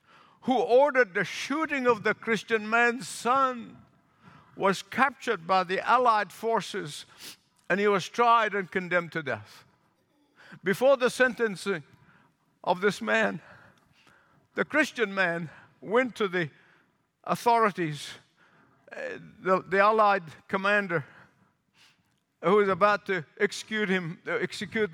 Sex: male